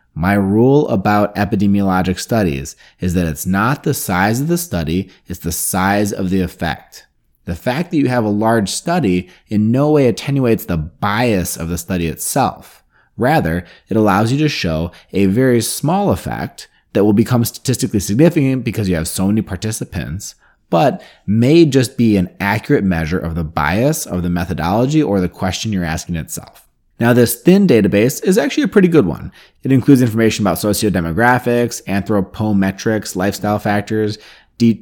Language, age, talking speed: English, 30-49, 165 wpm